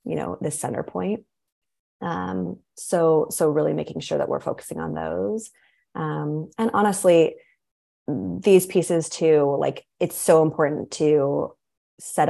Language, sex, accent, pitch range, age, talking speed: English, female, American, 145-185 Hz, 20-39, 135 wpm